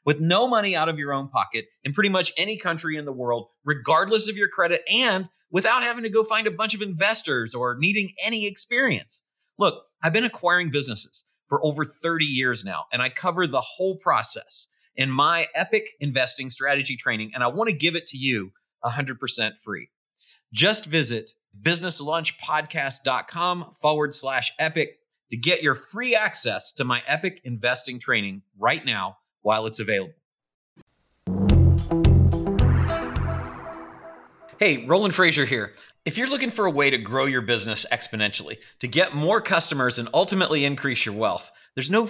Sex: male